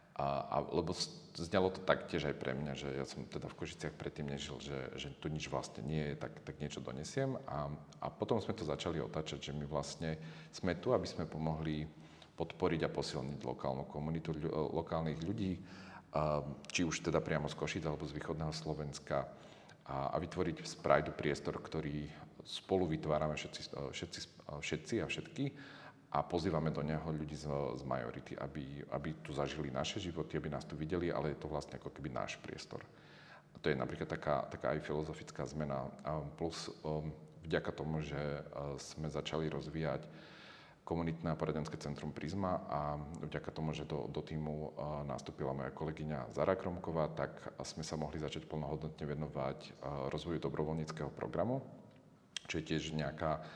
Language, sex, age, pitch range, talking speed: Slovak, male, 40-59, 75-80 Hz, 165 wpm